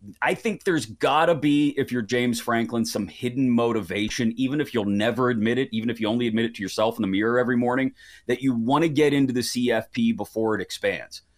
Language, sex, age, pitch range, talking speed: English, male, 30-49, 110-135 Hz, 225 wpm